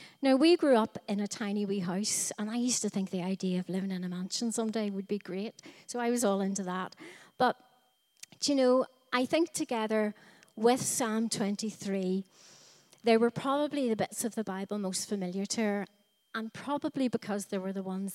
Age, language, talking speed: 40-59, English, 200 wpm